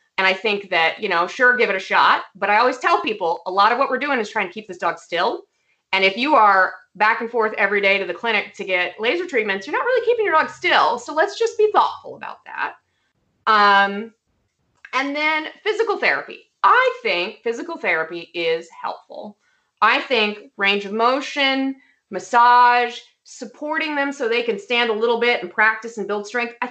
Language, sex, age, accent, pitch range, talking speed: English, female, 30-49, American, 195-305 Hz, 205 wpm